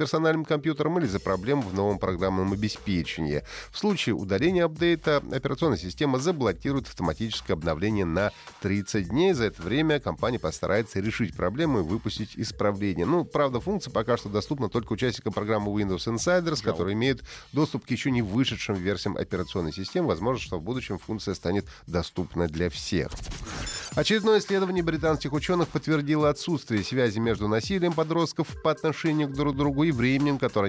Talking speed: 155 wpm